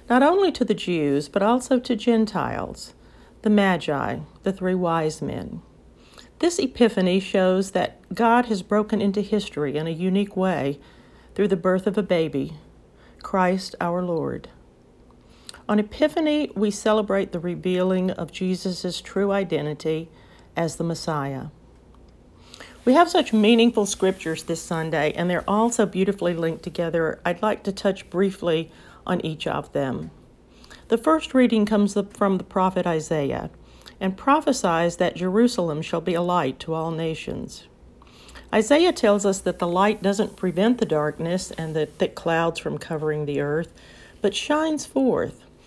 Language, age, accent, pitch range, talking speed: English, 50-69, American, 165-210 Hz, 150 wpm